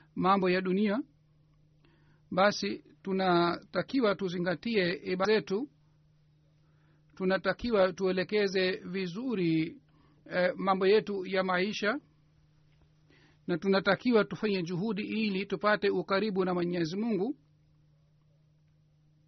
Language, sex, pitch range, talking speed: Swahili, male, 150-195 Hz, 80 wpm